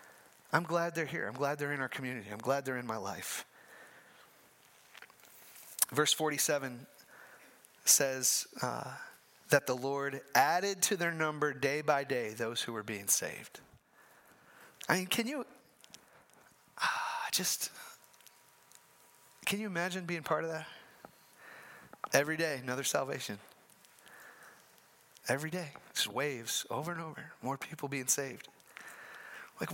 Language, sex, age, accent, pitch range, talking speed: English, male, 30-49, American, 140-180 Hz, 130 wpm